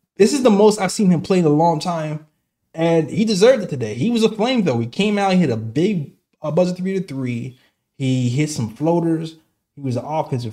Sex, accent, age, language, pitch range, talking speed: male, American, 20-39, English, 125-185 Hz, 240 wpm